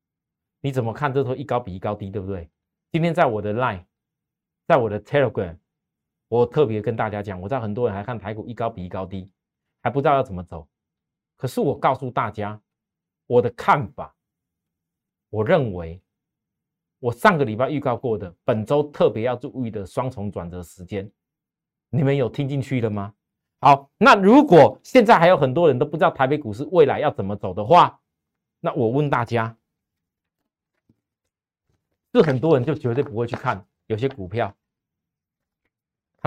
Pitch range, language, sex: 100-140 Hz, Chinese, male